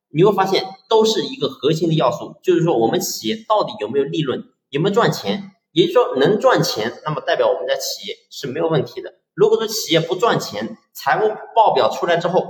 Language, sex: Chinese, male